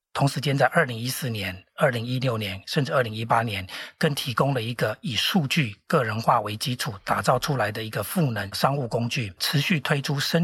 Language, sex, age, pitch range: Chinese, male, 40-59, 115-145 Hz